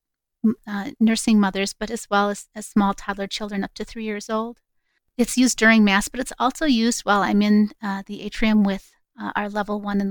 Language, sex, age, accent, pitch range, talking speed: English, female, 30-49, American, 205-235 Hz, 215 wpm